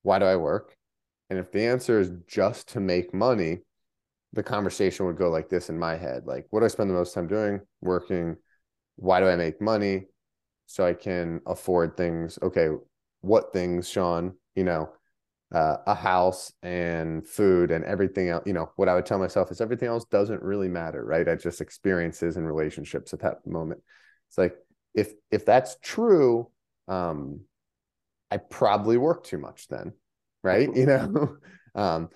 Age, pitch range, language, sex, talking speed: 30-49, 90-115 Hz, English, male, 175 wpm